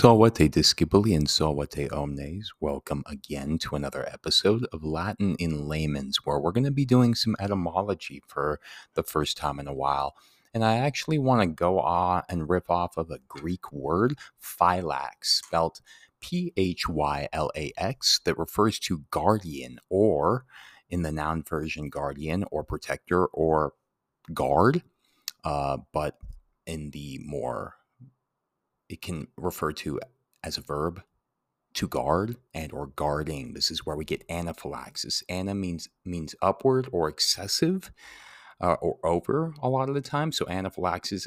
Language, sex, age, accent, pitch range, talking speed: English, male, 30-49, American, 75-100 Hz, 150 wpm